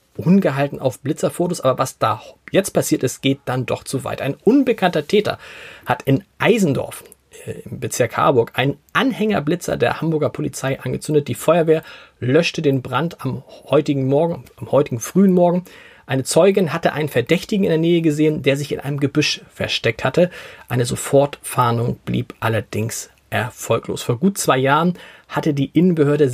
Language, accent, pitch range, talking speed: German, German, 135-175 Hz, 155 wpm